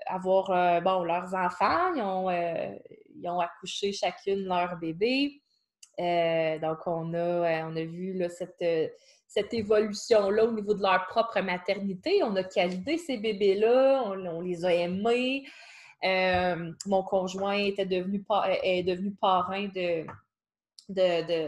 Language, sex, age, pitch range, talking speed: French, female, 20-39, 180-225 Hz, 150 wpm